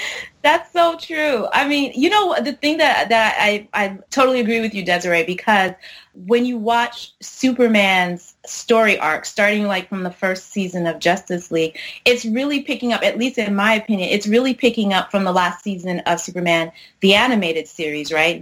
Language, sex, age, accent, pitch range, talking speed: English, female, 30-49, American, 175-230 Hz, 185 wpm